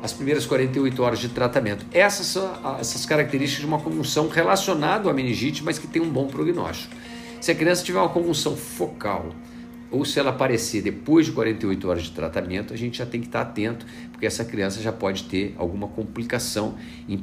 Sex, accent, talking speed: male, Brazilian, 190 wpm